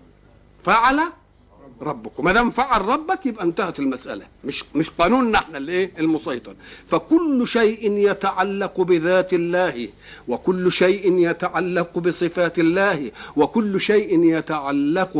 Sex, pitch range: male, 140-210 Hz